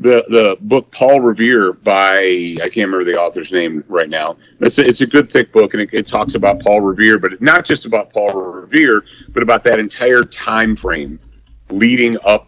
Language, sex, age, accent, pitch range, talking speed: English, male, 50-69, American, 95-120 Hz, 200 wpm